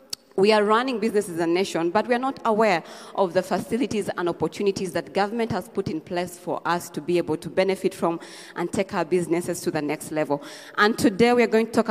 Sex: female